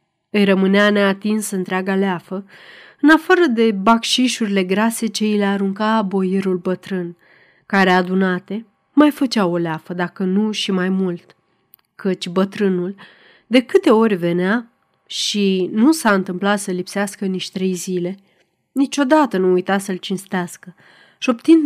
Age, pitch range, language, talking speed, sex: 30-49, 185-230 Hz, Romanian, 135 wpm, female